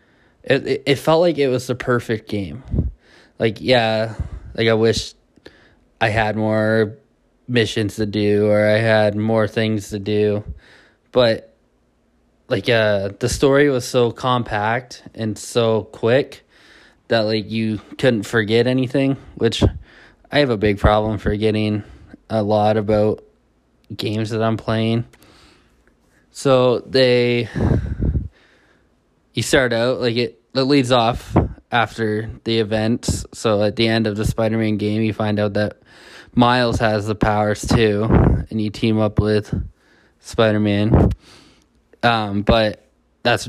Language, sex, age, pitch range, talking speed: English, male, 20-39, 105-115 Hz, 135 wpm